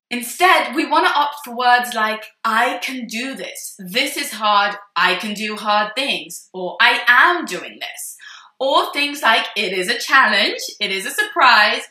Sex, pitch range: female, 190-265 Hz